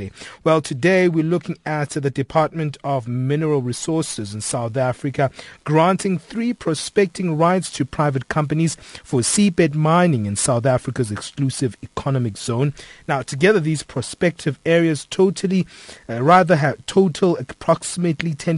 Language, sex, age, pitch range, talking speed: English, male, 30-49, 125-155 Hz, 130 wpm